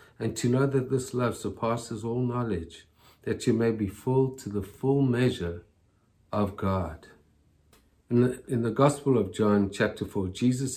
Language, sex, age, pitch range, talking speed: English, male, 50-69, 100-125 Hz, 160 wpm